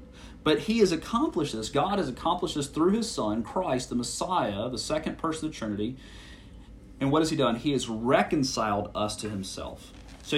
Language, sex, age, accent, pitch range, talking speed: English, male, 40-59, American, 110-160 Hz, 190 wpm